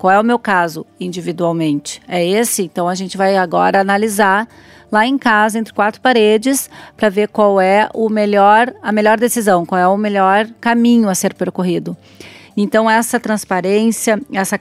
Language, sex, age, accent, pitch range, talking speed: Portuguese, female, 40-59, Brazilian, 190-225 Hz, 170 wpm